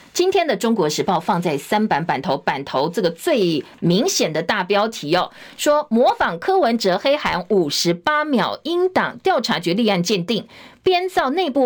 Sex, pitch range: female, 190-260 Hz